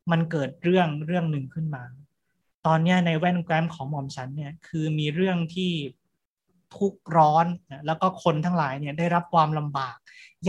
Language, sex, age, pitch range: Thai, male, 30-49, 145-170 Hz